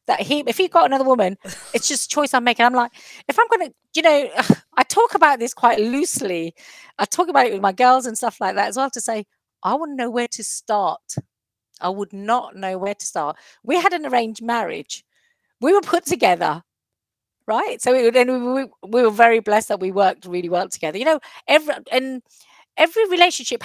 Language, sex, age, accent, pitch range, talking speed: English, female, 40-59, British, 195-270 Hz, 215 wpm